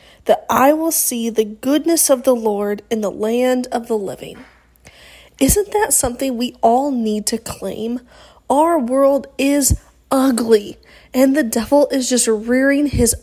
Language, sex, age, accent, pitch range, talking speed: English, female, 30-49, American, 230-295 Hz, 155 wpm